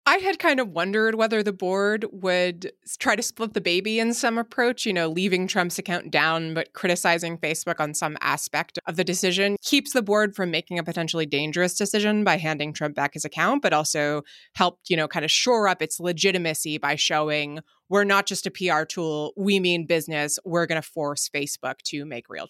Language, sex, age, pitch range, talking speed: English, female, 20-39, 160-210 Hz, 205 wpm